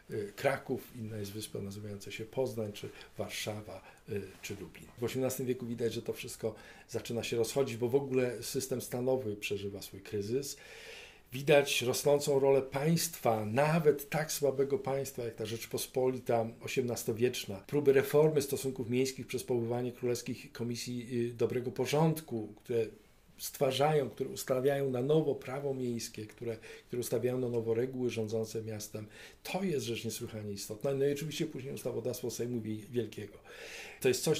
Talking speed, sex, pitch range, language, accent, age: 145 wpm, male, 120-150 Hz, Polish, native, 50-69